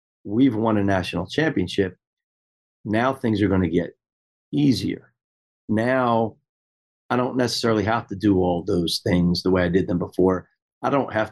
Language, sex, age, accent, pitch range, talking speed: English, male, 40-59, American, 90-115 Hz, 165 wpm